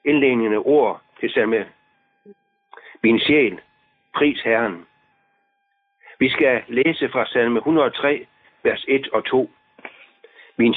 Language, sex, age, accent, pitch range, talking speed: Danish, male, 60-79, native, 250-415 Hz, 110 wpm